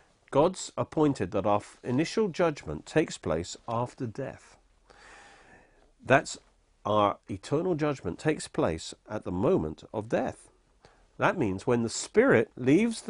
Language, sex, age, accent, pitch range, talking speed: English, male, 50-69, British, 105-145 Hz, 125 wpm